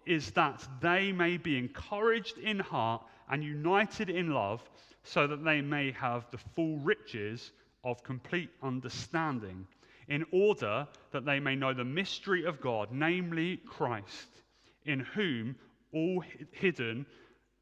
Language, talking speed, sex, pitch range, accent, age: English, 135 wpm, male, 125-200 Hz, British, 30-49